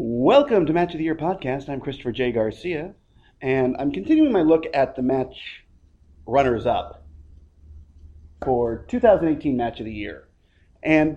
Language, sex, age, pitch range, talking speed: English, male, 30-49, 105-155 Hz, 145 wpm